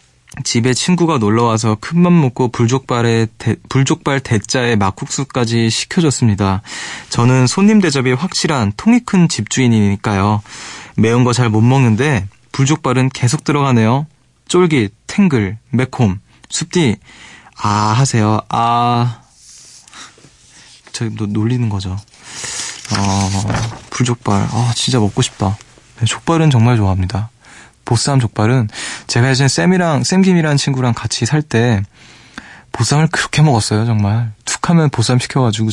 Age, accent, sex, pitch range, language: 20-39, native, male, 105-130 Hz, Korean